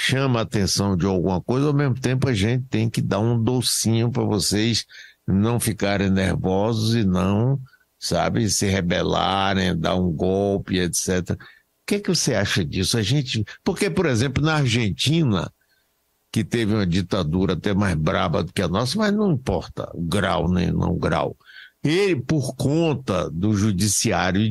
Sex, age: male, 60-79